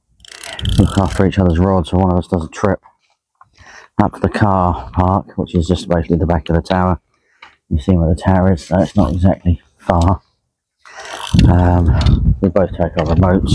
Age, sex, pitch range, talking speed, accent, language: 40-59, male, 85-100 Hz, 190 wpm, British, English